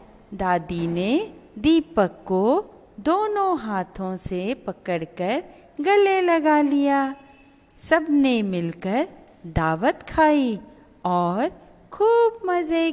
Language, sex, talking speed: Hindi, female, 85 wpm